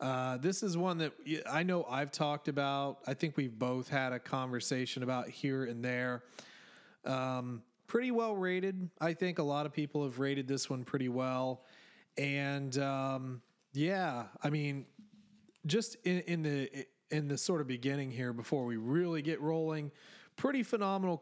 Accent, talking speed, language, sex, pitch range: American, 165 wpm, English, male, 130-160 Hz